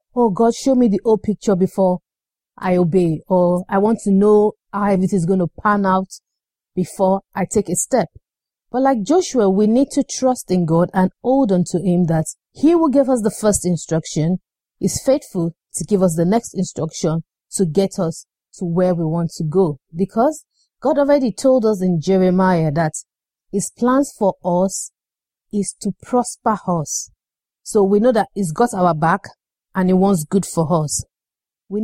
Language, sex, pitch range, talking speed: English, female, 175-230 Hz, 185 wpm